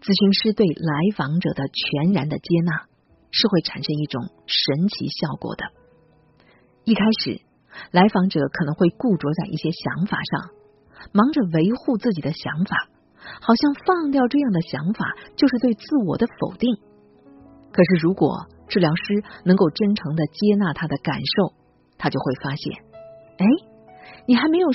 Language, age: Chinese, 50-69